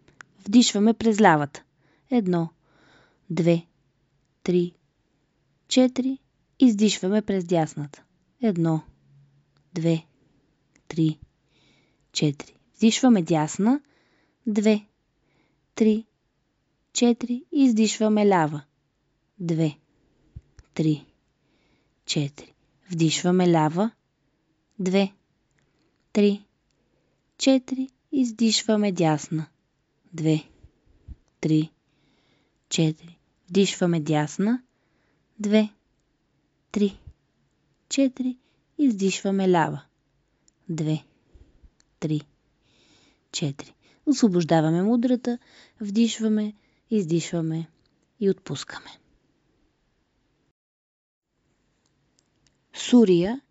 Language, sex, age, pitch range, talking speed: Bulgarian, female, 20-39, 155-215 Hz, 55 wpm